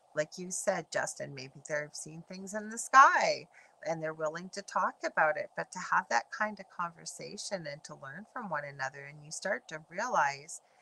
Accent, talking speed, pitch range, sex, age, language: American, 205 wpm, 150-210 Hz, female, 40-59, English